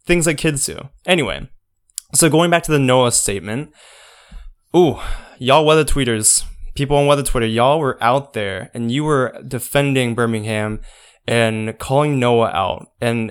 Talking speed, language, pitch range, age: 155 wpm, English, 110-135 Hz, 20-39